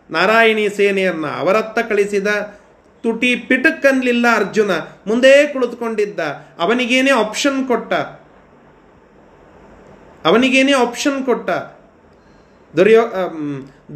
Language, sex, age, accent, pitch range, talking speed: Kannada, male, 30-49, native, 195-245 Hz, 70 wpm